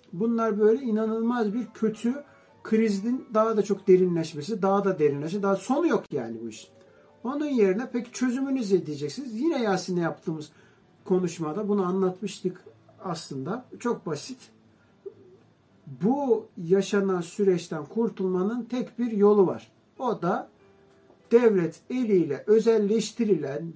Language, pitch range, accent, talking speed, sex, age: Turkish, 170-215 Hz, native, 120 wpm, male, 60-79